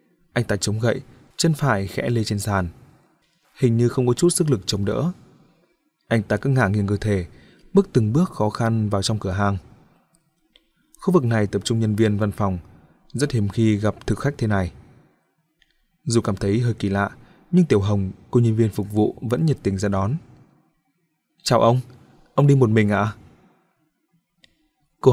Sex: male